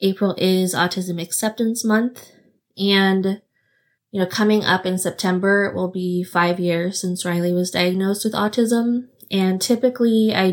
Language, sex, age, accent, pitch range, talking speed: English, female, 20-39, American, 175-200 Hz, 150 wpm